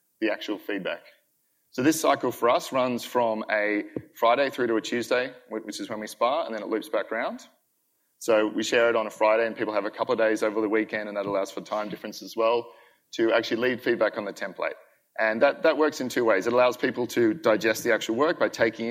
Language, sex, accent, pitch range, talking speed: English, male, Australian, 110-125 Hz, 240 wpm